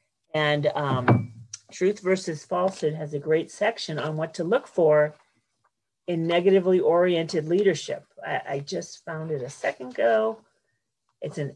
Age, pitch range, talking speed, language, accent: 40-59, 150-195 Hz, 145 wpm, English, American